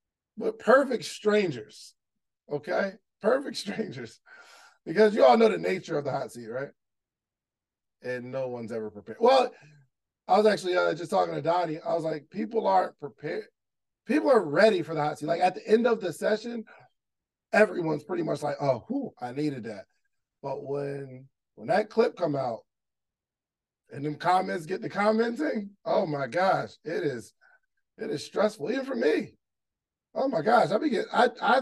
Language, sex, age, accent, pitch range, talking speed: English, male, 20-39, American, 145-230 Hz, 175 wpm